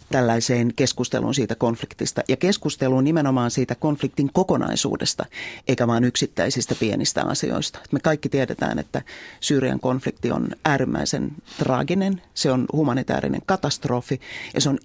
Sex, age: male, 40-59